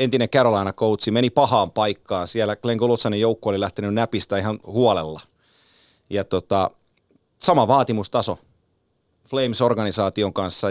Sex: male